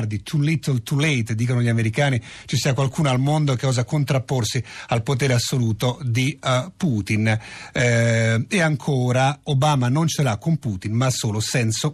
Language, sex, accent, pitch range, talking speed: Italian, male, native, 115-140 Hz, 170 wpm